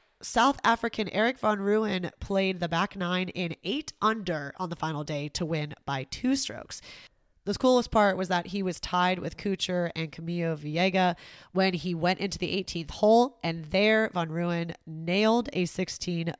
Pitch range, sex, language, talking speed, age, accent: 165-210 Hz, female, English, 175 wpm, 20-39, American